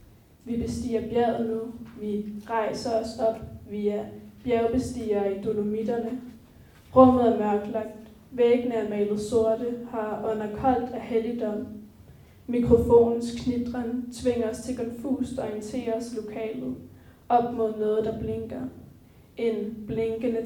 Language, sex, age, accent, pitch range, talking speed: Danish, female, 10-29, native, 215-240 Hz, 120 wpm